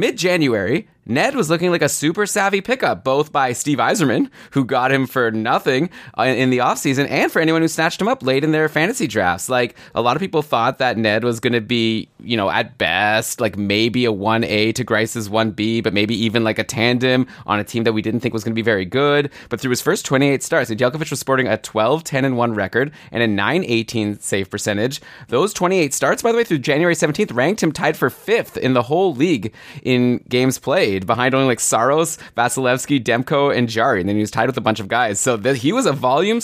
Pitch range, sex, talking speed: 110-135 Hz, male, 225 wpm